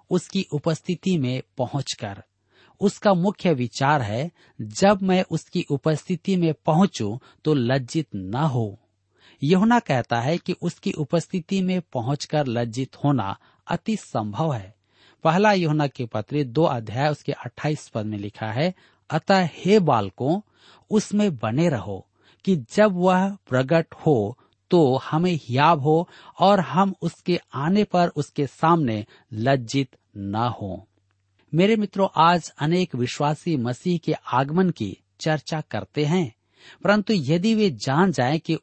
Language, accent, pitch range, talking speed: Hindi, native, 120-175 Hz, 135 wpm